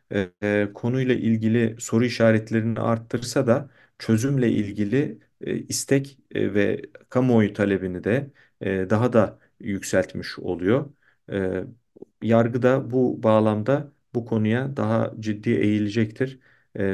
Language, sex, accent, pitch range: Turkish, male, native, 105-120 Hz